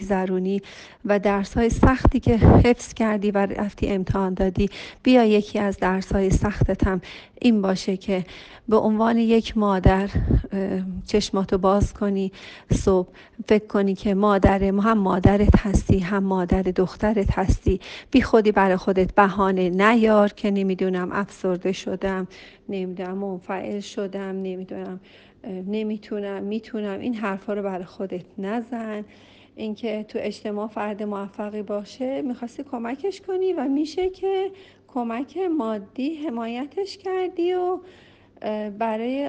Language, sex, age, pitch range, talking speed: Persian, female, 40-59, 190-230 Hz, 120 wpm